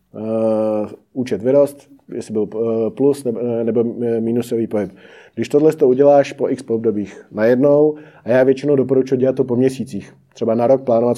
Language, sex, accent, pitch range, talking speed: Czech, male, native, 115-135 Hz, 160 wpm